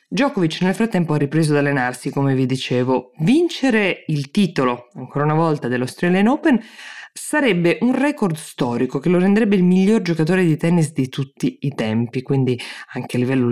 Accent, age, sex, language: native, 20-39, female, Italian